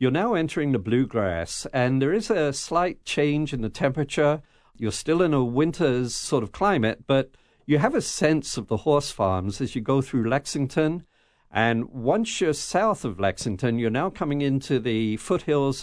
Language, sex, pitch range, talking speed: English, male, 115-150 Hz, 180 wpm